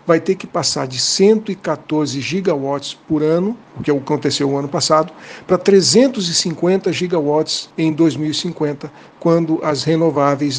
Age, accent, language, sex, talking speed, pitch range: 60-79, Brazilian, Portuguese, male, 130 wpm, 150-185 Hz